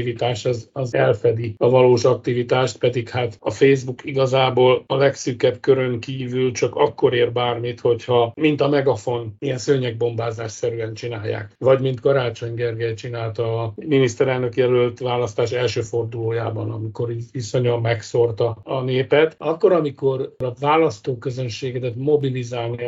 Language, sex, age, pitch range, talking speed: Hungarian, male, 50-69, 120-135 Hz, 125 wpm